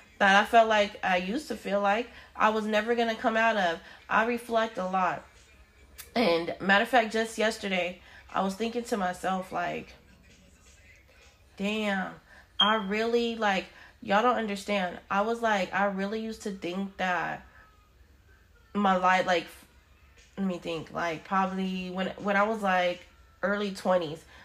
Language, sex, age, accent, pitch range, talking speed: English, female, 20-39, American, 175-210 Hz, 155 wpm